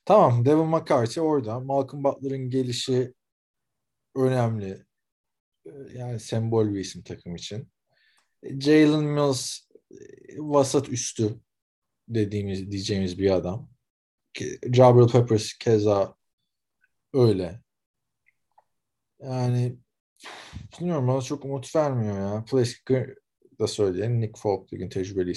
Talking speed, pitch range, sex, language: 95 wpm, 100-130 Hz, male, Turkish